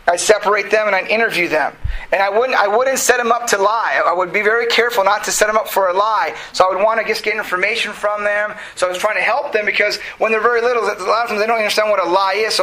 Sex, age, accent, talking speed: male, 30-49, American, 305 wpm